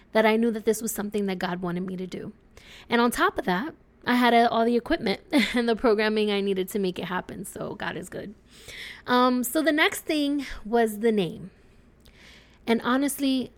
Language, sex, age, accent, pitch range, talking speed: English, female, 20-39, American, 190-225 Hz, 205 wpm